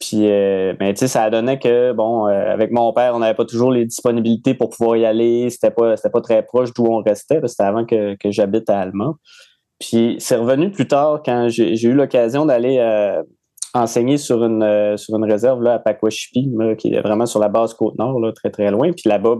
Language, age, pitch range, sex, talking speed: French, 20-39, 110-125 Hz, male, 235 wpm